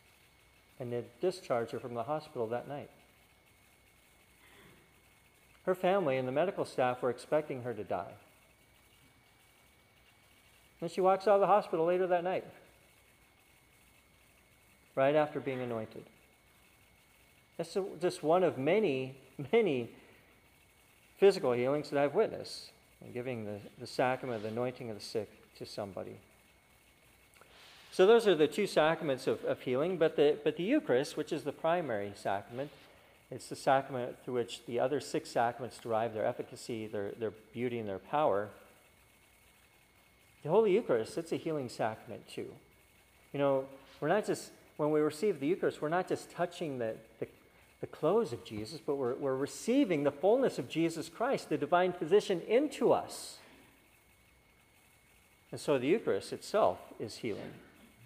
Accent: American